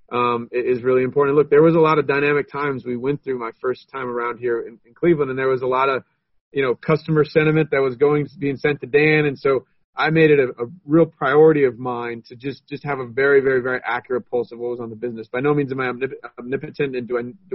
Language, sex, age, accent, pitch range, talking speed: English, male, 40-59, American, 120-145 Hz, 260 wpm